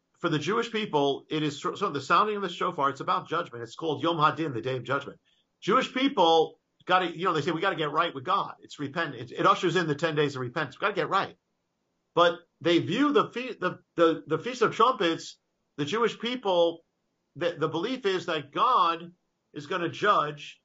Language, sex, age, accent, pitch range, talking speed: English, male, 50-69, American, 150-185 Hz, 215 wpm